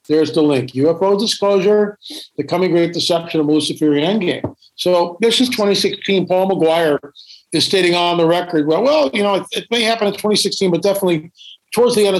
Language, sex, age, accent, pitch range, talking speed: English, male, 50-69, American, 155-200 Hz, 185 wpm